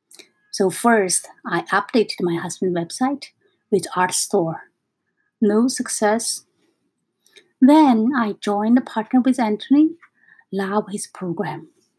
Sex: female